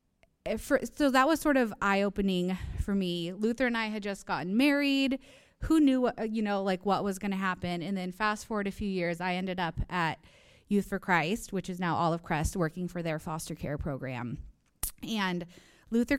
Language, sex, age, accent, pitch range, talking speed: English, female, 20-39, American, 185-235 Hz, 195 wpm